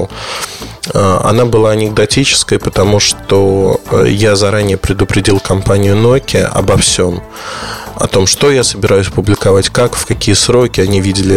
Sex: male